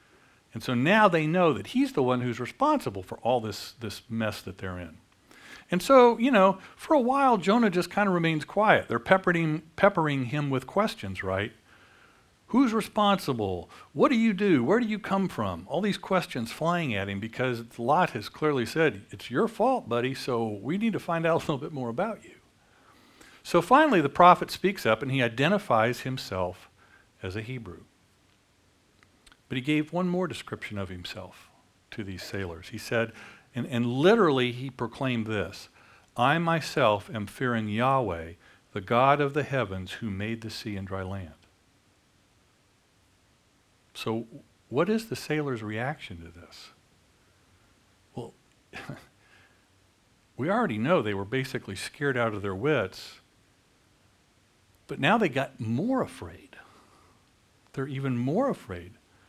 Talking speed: 160 wpm